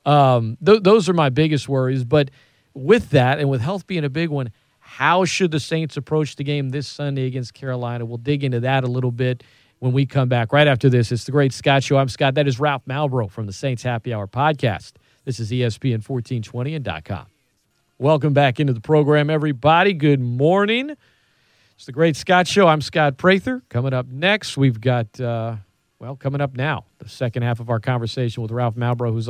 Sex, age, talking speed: male, 40-59, 200 wpm